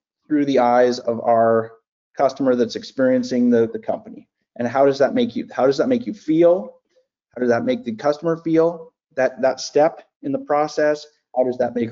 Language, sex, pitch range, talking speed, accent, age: English, male, 120-155 Hz, 200 wpm, American, 30-49